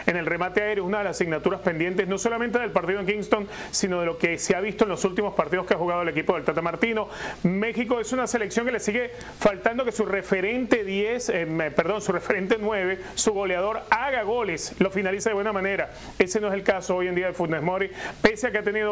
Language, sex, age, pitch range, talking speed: Spanish, male, 30-49, 185-230 Hz, 240 wpm